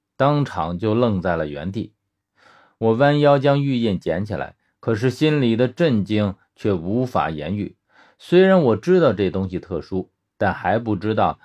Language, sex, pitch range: Chinese, male, 100-140 Hz